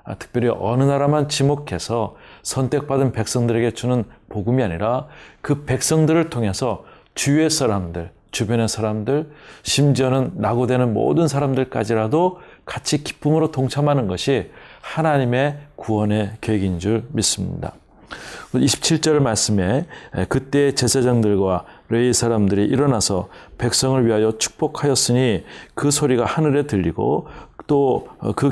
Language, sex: Korean, male